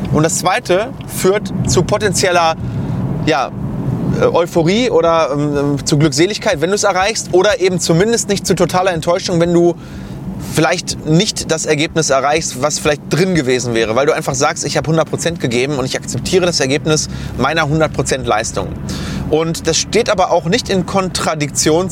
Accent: German